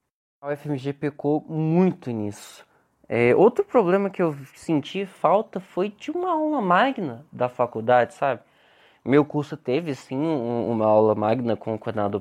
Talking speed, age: 150 wpm, 20-39